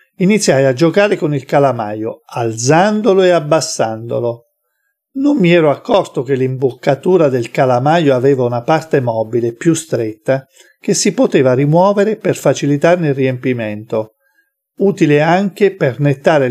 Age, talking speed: 50-69, 125 wpm